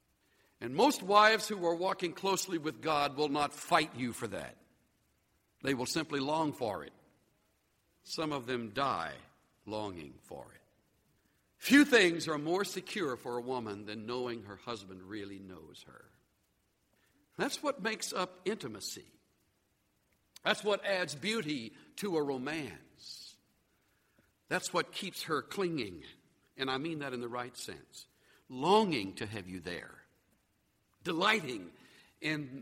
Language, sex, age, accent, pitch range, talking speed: English, male, 60-79, American, 115-160 Hz, 140 wpm